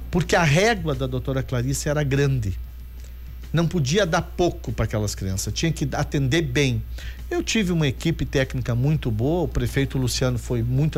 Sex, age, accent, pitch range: male, 50-69, Brazilian, 125-160 Hz